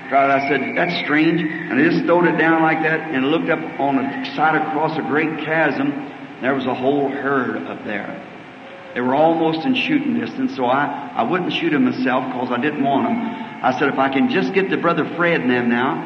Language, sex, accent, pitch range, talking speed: English, male, American, 145-165 Hz, 225 wpm